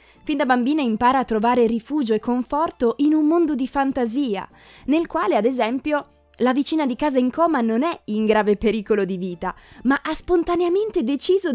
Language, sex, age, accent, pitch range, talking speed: Italian, female, 20-39, native, 220-310 Hz, 180 wpm